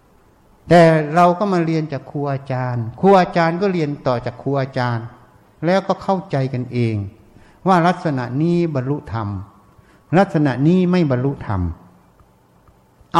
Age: 60-79